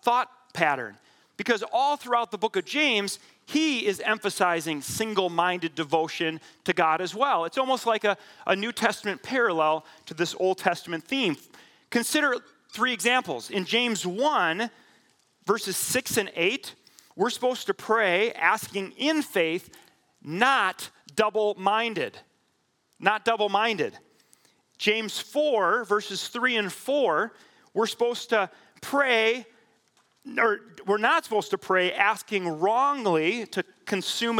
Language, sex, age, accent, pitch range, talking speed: English, male, 40-59, American, 185-230 Hz, 125 wpm